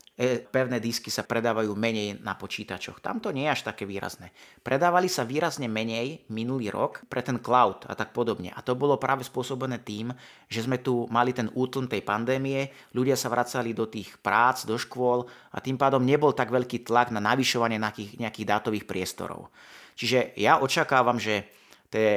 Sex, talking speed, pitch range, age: male, 175 wpm, 110-130 Hz, 30-49